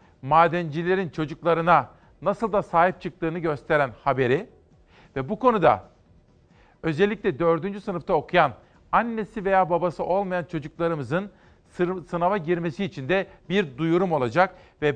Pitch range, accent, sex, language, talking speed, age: 145-185 Hz, native, male, Turkish, 110 wpm, 50-69